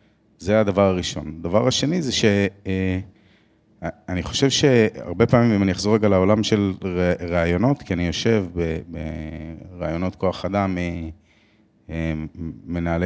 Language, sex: Hebrew, male